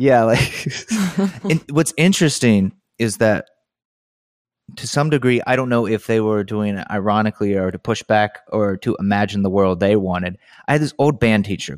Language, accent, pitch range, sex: English, American, 100-120 Hz, male